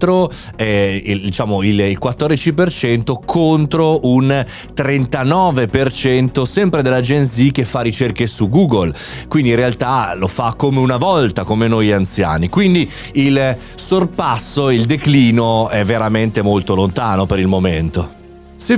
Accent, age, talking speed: native, 30-49, 125 wpm